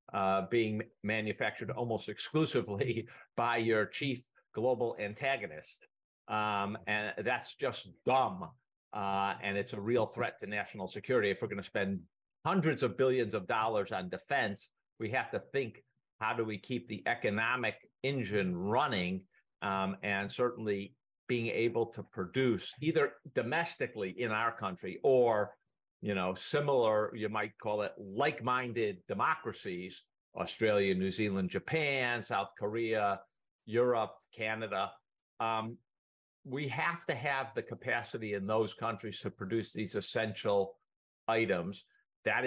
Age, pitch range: 50-69, 100-120 Hz